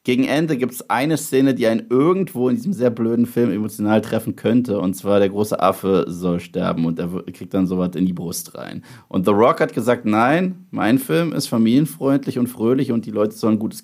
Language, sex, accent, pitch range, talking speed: German, male, German, 95-125 Hz, 220 wpm